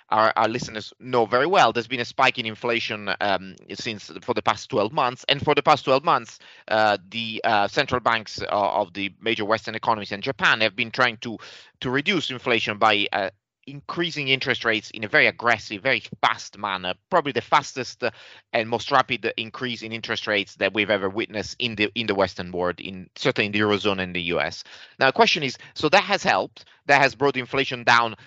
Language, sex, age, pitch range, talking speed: English, male, 30-49, 110-135 Hz, 205 wpm